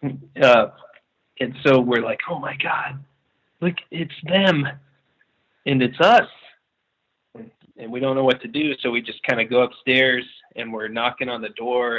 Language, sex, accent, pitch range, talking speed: English, male, American, 115-165 Hz, 175 wpm